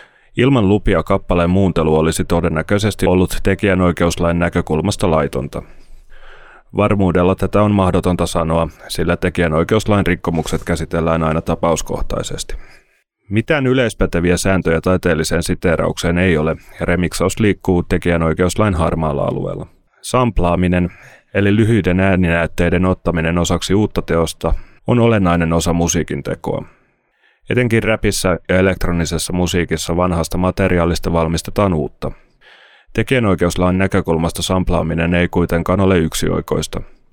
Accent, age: native, 30-49